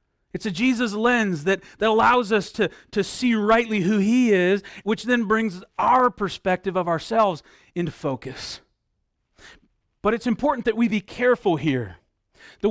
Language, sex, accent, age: English, male, American, 40-59